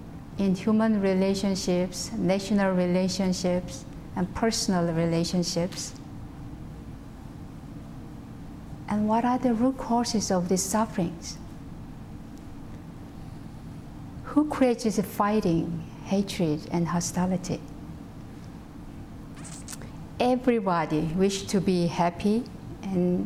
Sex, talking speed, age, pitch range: female, 75 wpm, 50-69, 170-215 Hz